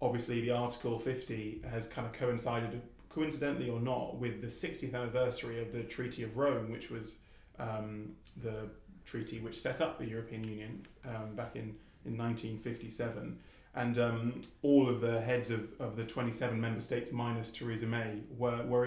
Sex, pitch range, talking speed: male, 115-125 Hz, 170 wpm